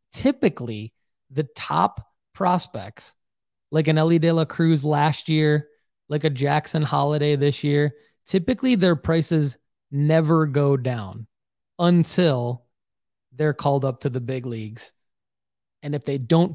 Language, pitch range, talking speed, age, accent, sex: English, 130-155 Hz, 130 wpm, 20-39, American, male